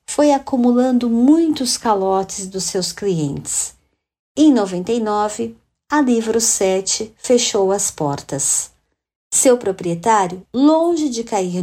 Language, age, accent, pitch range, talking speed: Portuguese, 50-69, Brazilian, 180-240 Hz, 105 wpm